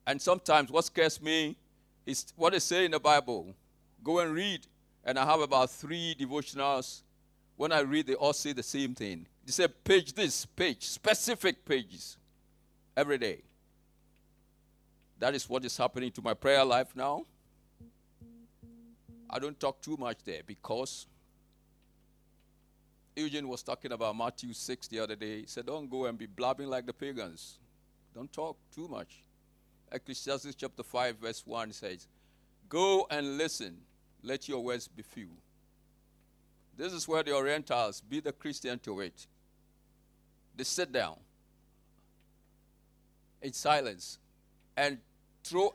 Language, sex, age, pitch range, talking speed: English, male, 50-69, 125-155 Hz, 145 wpm